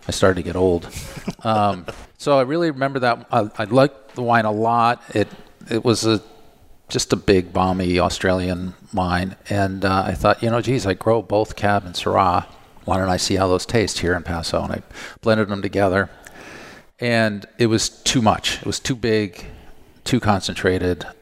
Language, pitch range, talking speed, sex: English, 90-110 Hz, 190 wpm, male